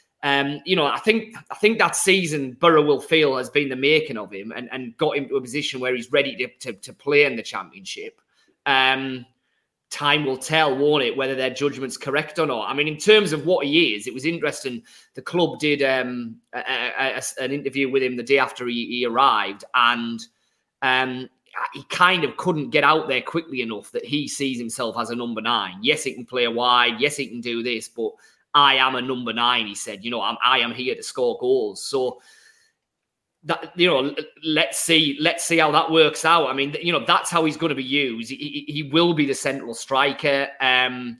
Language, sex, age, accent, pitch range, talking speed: English, male, 30-49, British, 130-160 Hz, 220 wpm